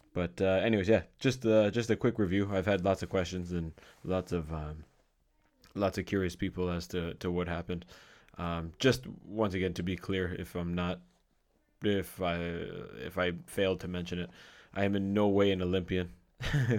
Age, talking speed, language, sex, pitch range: 20-39, 190 wpm, English, male, 90-100 Hz